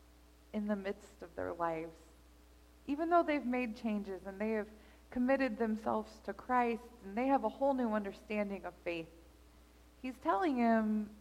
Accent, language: American, English